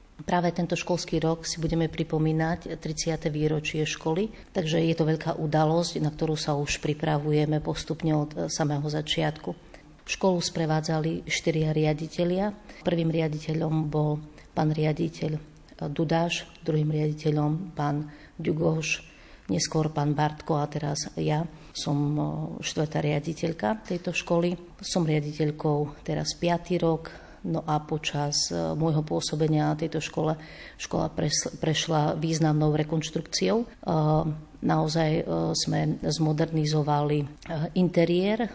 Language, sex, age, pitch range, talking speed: Slovak, female, 40-59, 150-165 Hz, 110 wpm